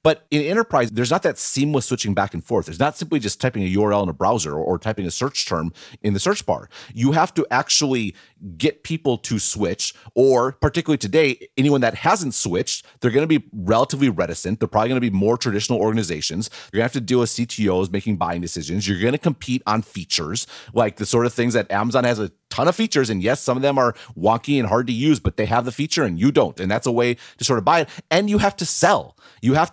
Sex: male